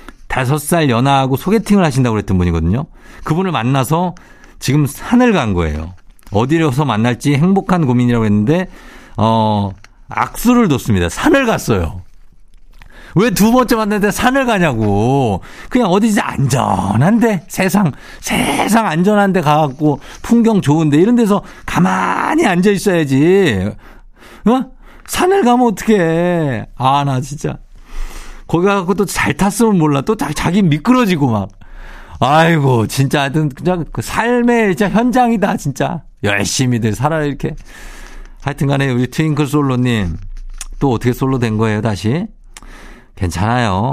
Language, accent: Korean, native